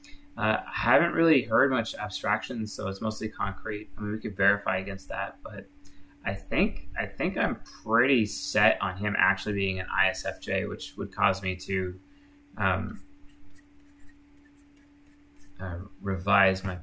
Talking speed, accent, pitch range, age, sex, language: 155 wpm, American, 70-100 Hz, 20-39, male, English